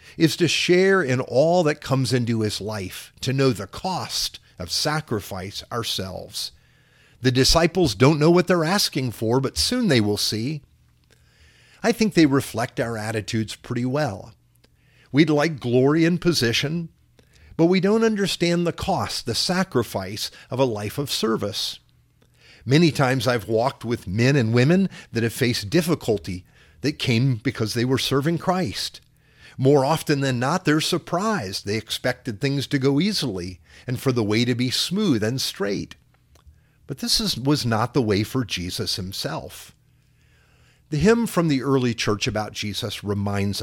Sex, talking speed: male, 160 wpm